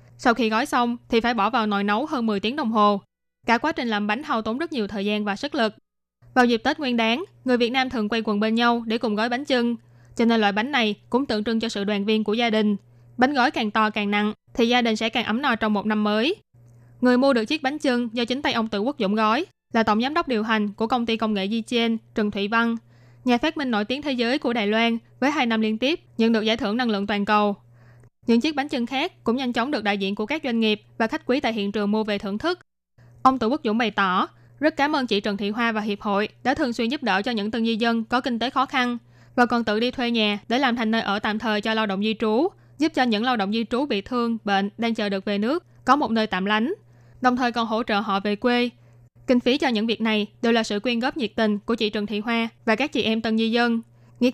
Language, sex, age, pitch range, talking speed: Vietnamese, female, 20-39, 210-245 Hz, 285 wpm